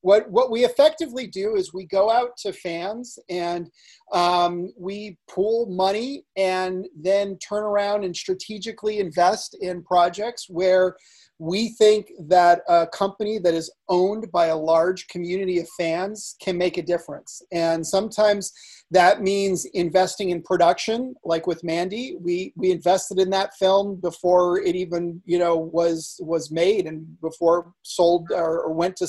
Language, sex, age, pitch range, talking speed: English, male, 40-59, 170-200 Hz, 155 wpm